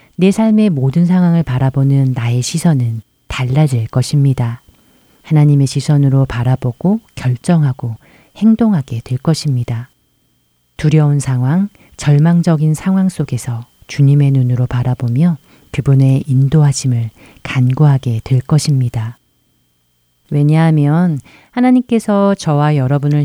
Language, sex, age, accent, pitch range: Korean, female, 40-59, native, 125-160 Hz